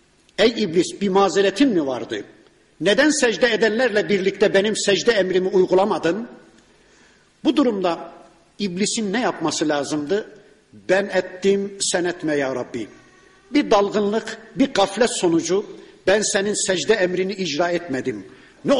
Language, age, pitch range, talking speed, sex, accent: Turkish, 60-79, 180-220 Hz, 120 wpm, male, native